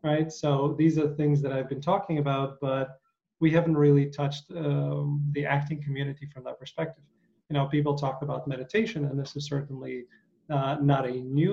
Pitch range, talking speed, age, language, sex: 135-150 Hz, 185 wpm, 30-49, English, male